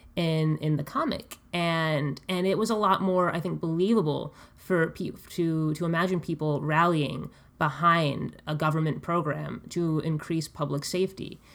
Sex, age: female, 20-39